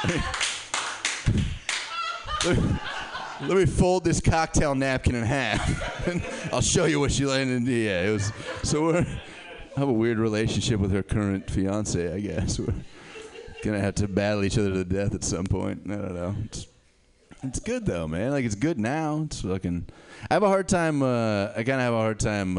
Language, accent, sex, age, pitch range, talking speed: English, American, male, 30-49, 100-145 Hz, 190 wpm